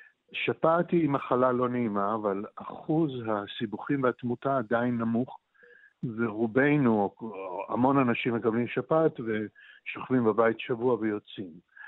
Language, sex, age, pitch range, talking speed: Hebrew, male, 60-79, 115-145 Hz, 100 wpm